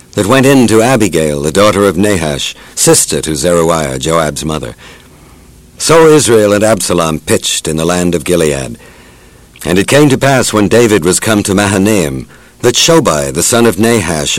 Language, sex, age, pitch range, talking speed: English, male, 60-79, 80-115 Hz, 170 wpm